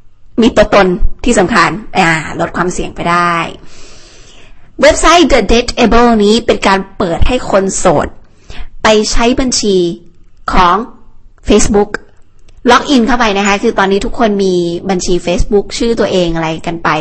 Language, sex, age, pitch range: Thai, female, 20-39, 180-240 Hz